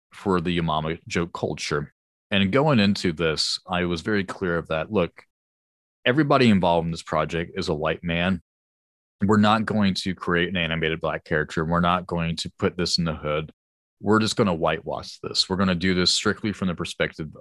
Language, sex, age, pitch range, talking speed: English, male, 30-49, 80-105 Hz, 200 wpm